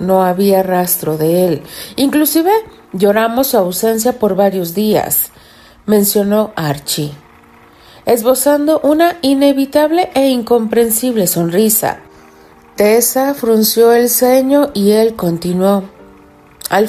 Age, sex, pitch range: 50-69, female, 190-255 Hz